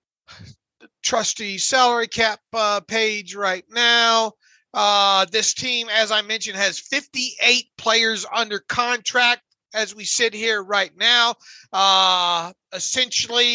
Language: English